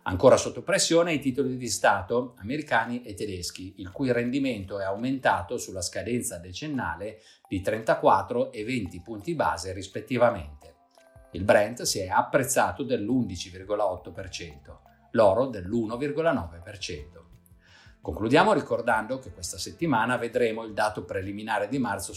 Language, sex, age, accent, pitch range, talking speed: Italian, male, 50-69, native, 90-125 Hz, 120 wpm